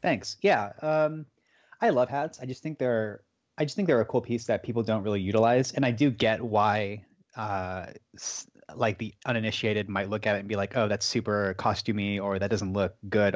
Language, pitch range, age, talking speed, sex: English, 100-120 Hz, 30-49, 210 wpm, male